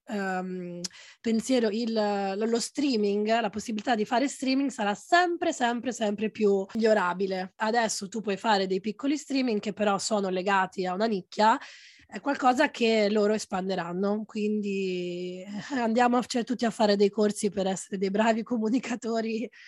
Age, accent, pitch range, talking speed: 20-39, native, 190-230 Hz, 140 wpm